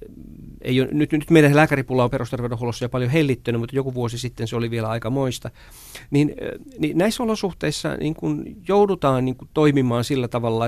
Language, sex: Finnish, male